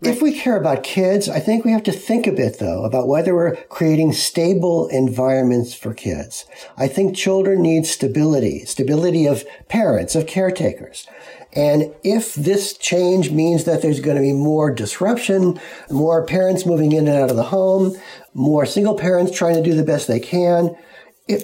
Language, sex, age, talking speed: English, male, 60-79, 180 wpm